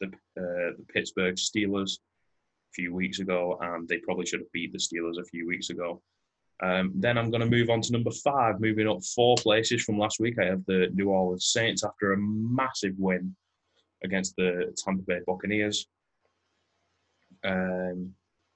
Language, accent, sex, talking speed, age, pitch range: English, British, male, 170 wpm, 20-39, 90-105 Hz